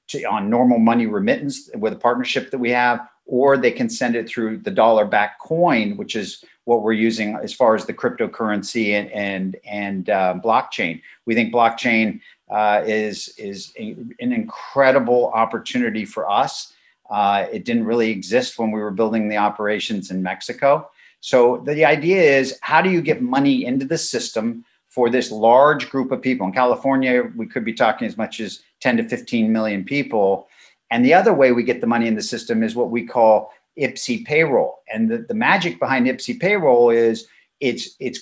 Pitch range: 115-165 Hz